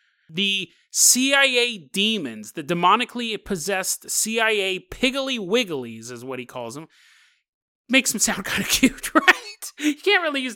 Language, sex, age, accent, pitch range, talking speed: English, male, 30-49, American, 170-245 Hz, 140 wpm